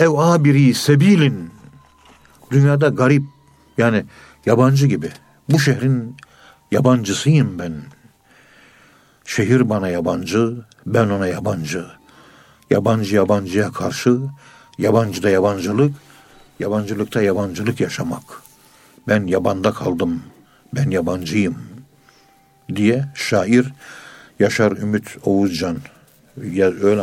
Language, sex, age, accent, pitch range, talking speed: Turkish, male, 60-79, native, 100-135 Hz, 80 wpm